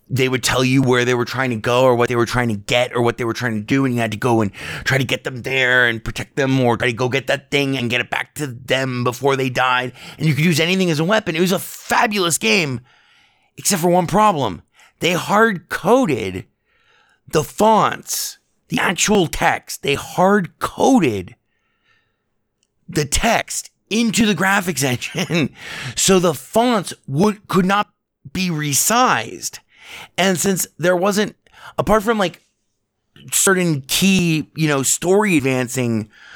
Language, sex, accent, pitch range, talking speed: English, male, American, 125-180 Hz, 180 wpm